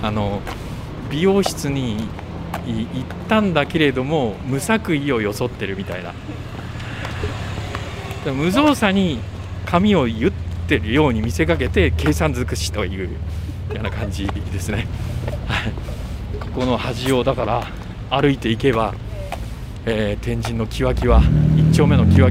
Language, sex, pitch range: Japanese, male, 95-140 Hz